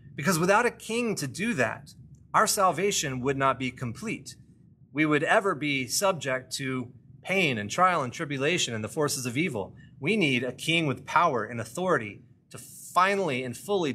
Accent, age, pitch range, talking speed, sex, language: American, 30-49, 130-165 Hz, 175 wpm, male, English